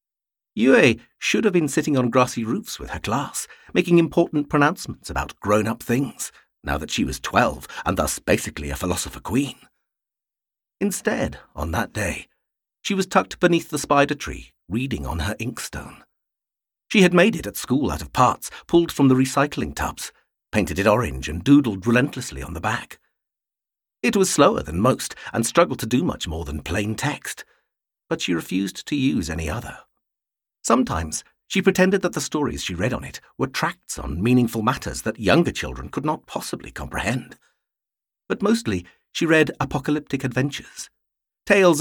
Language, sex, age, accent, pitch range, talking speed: English, male, 50-69, British, 110-150 Hz, 165 wpm